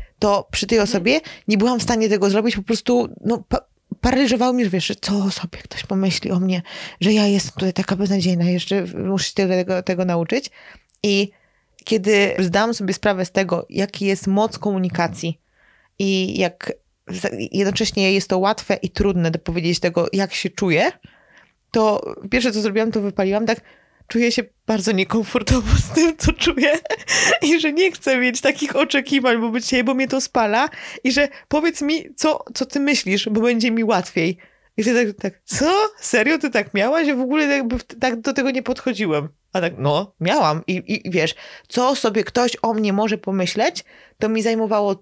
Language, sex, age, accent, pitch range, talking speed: Polish, female, 20-39, native, 195-250 Hz, 175 wpm